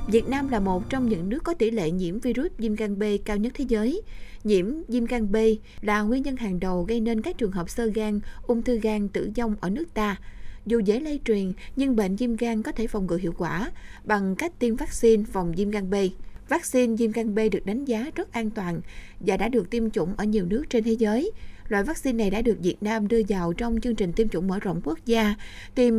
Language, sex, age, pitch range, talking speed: Vietnamese, female, 20-39, 200-240 Hz, 240 wpm